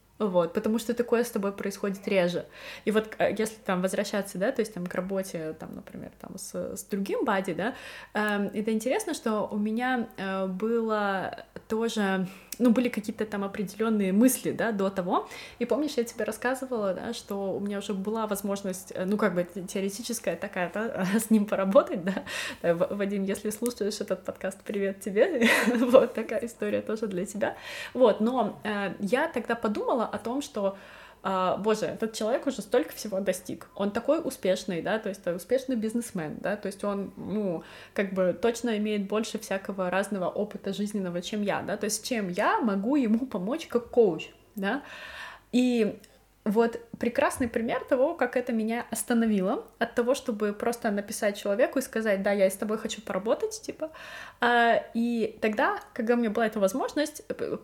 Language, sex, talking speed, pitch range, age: Russian, female, 170 wpm, 200-240 Hz, 20-39